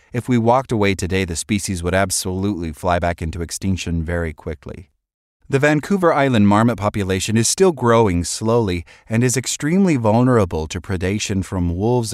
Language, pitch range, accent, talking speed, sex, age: English, 85-115 Hz, American, 160 wpm, male, 30-49